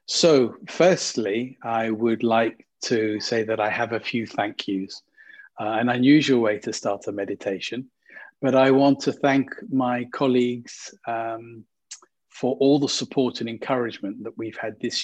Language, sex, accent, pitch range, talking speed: English, male, British, 105-125 Hz, 160 wpm